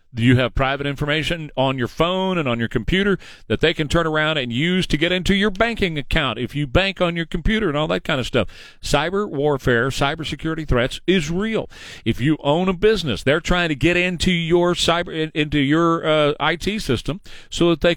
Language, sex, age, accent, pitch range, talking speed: English, male, 40-59, American, 125-175 Hz, 210 wpm